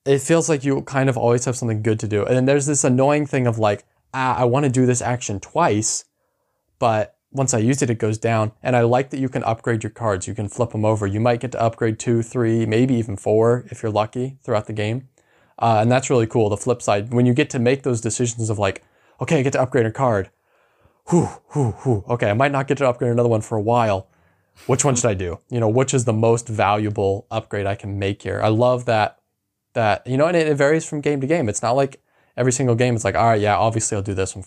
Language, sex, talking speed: English, male, 265 wpm